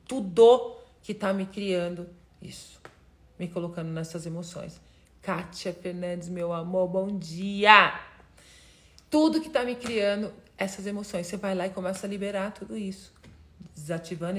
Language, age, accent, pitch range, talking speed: Portuguese, 40-59, Brazilian, 185-210 Hz, 140 wpm